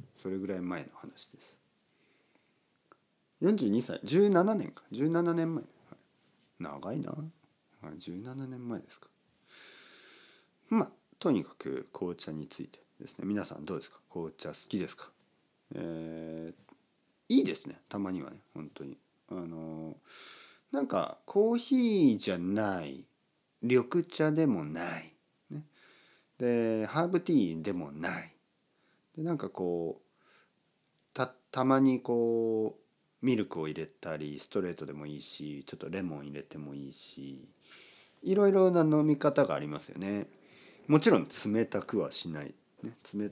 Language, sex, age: Japanese, male, 50-69